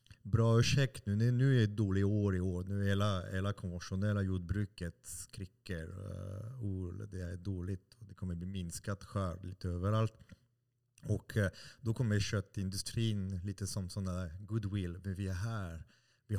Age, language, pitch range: 30-49, Swedish, 95-110 Hz